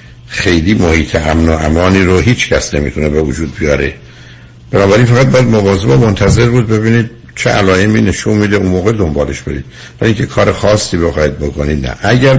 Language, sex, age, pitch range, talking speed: Persian, male, 60-79, 75-100 Hz, 170 wpm